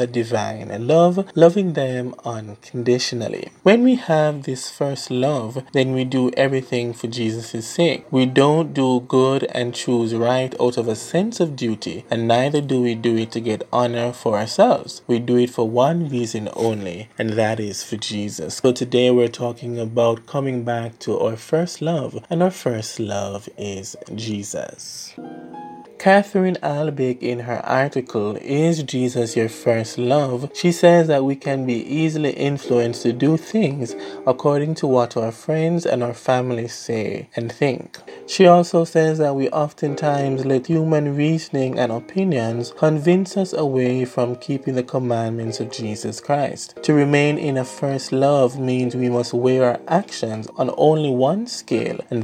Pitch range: 115-145 Hz